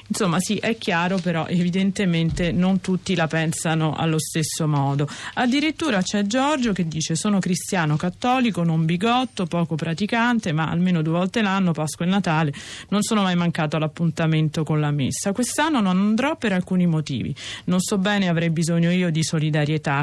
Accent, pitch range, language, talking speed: native, 160-205 Hz, Italian, 165 wpm